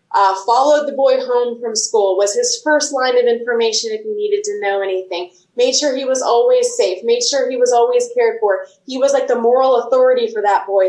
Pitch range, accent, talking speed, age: 200-280 Hz, American, 225 wpm, 20-39